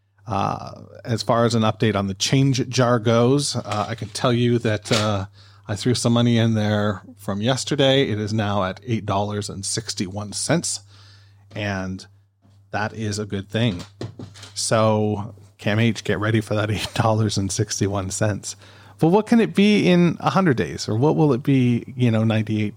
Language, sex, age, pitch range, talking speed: English, male, 40-59, 100-120 Hz, 180 wpm